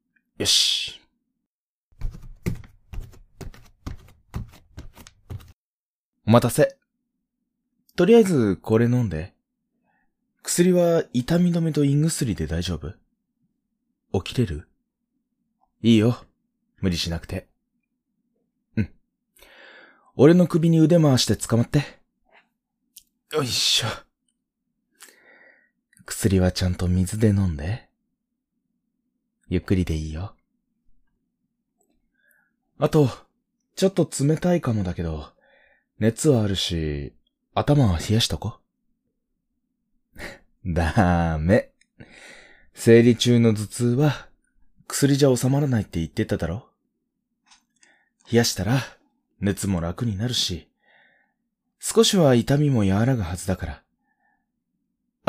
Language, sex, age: Japanese, male, 20-39